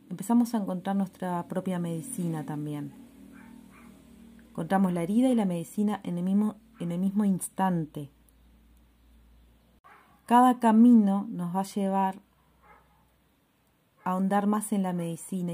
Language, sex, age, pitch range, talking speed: Spanish, female, 30-49, 165-200 Hz, 125 wpm